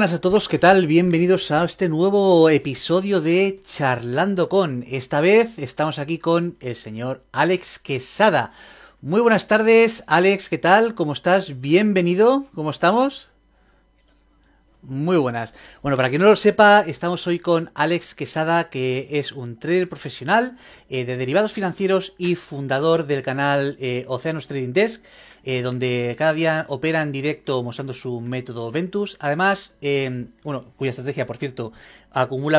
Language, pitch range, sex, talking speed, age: Spanish, 130-180 Hz, male, 145 wpm, 30-49